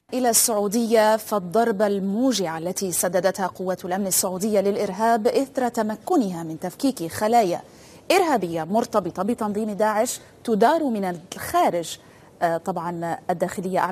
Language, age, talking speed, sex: Italian, 30-49, 105 wpm, female